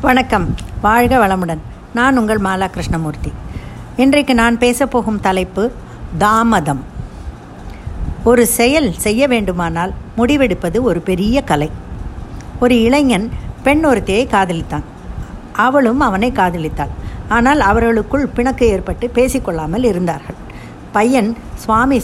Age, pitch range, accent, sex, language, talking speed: 60-79, 185-250 Hz, native, female, Tamil, 95 wpm